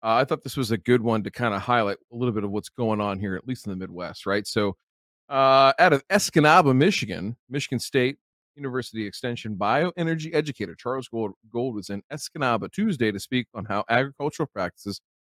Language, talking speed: English, 200 wpm